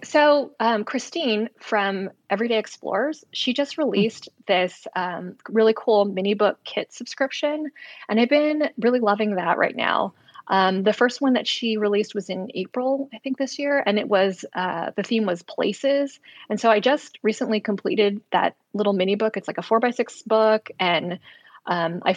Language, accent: English, American